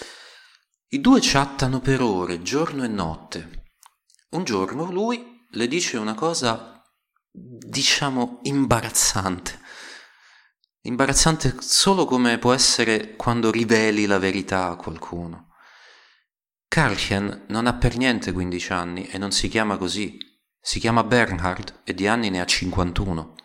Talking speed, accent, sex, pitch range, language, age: 125 wpm, native, male, 85-120 Hz, Italian, 30-49